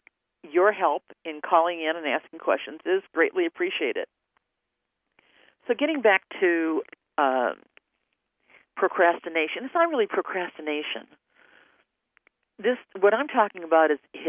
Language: English